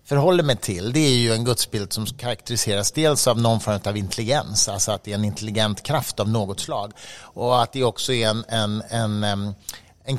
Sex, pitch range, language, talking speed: male, 105-125 Hz, English, 205 wpm